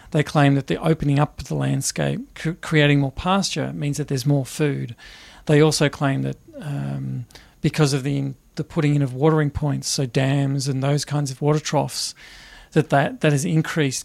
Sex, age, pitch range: male, 40-59, 140-160 Hz